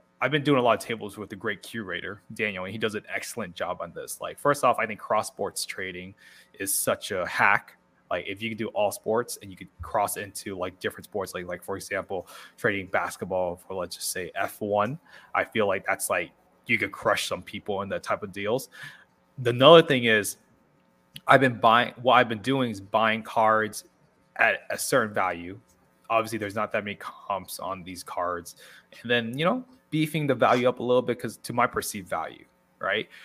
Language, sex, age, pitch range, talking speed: English, male, 20-39, 105-125 Hz, 210 wpm